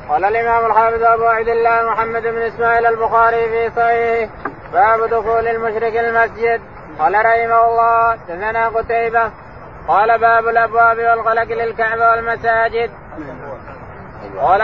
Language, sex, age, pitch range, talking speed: Arabic, male, 20-39, 225-230 Hz, 115 wpm